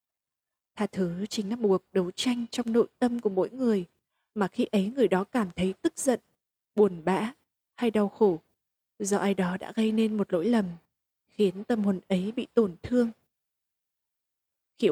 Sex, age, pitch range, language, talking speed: female, 20-39, 190-225 Hz, Vietnamese, 180 wpm